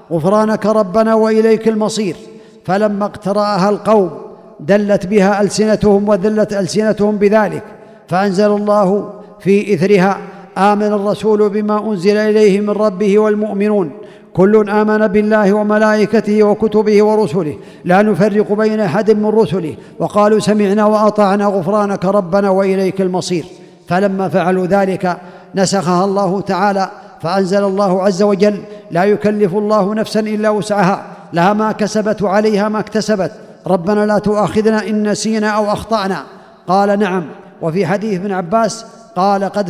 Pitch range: 195-215 Hz